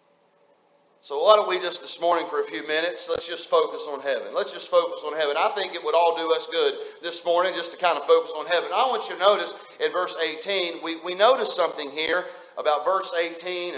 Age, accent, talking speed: 40-59, American, 235 wpm